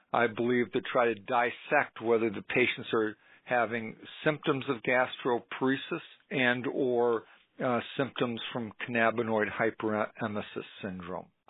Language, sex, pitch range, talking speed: English, male, 110-125 Hz, 115 wpm